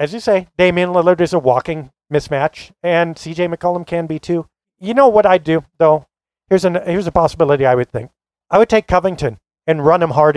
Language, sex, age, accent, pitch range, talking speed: English, male, 40-59, American, 135-175 Hz, 215 wpm